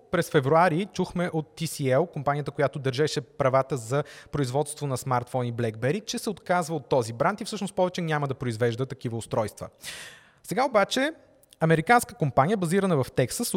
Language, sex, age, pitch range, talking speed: Bulgarian, male, 20-39, 135-185 Hz, 155 wpm